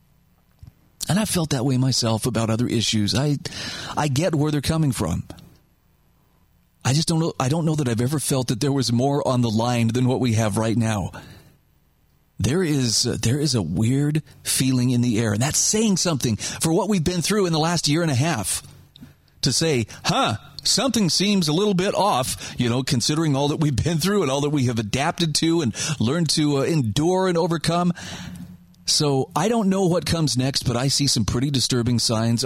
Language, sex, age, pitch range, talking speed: English, male, 40-59, 120-160 Hz, 205 wpm